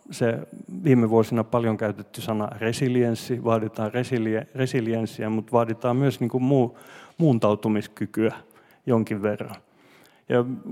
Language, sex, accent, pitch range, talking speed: Finnish, male, native, 110-125 Hz, 110 wpm